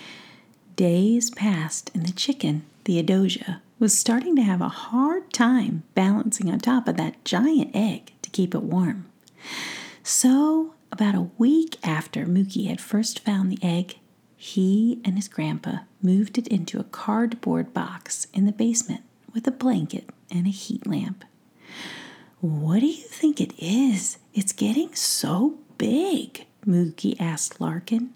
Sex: female